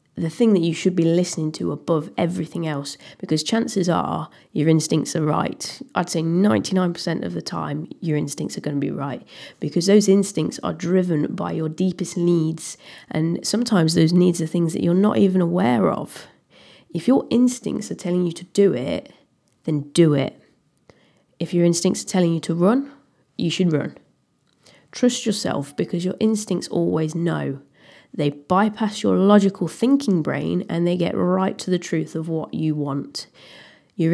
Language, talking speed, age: English, 175 wpm, 20-39